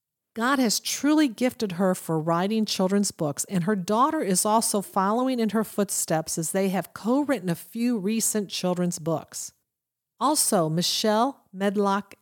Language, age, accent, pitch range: English, 40-59, American, 170-225 Hz